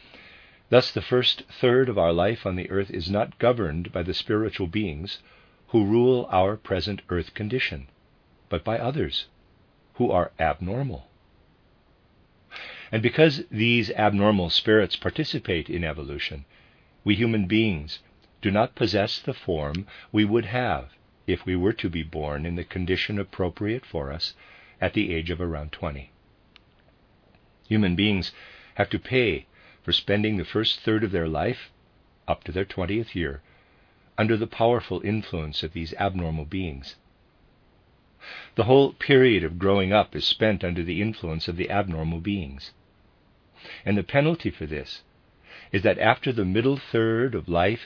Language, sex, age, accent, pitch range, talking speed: English, male, 50-69, American, 85-110 Hz, 150 wpm